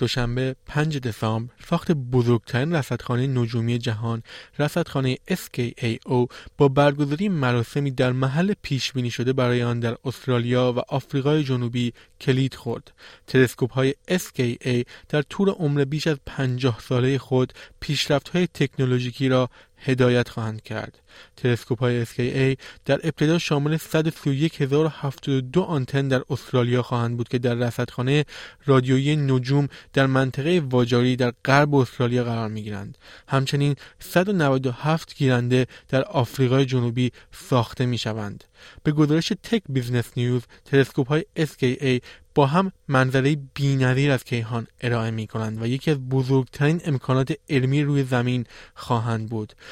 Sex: male